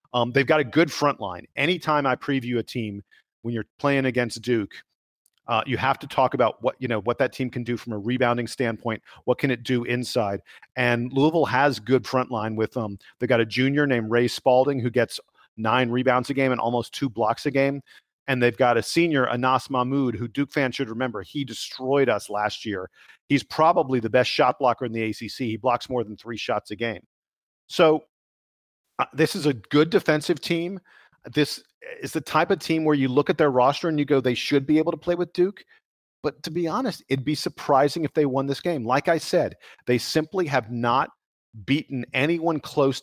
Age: 40-59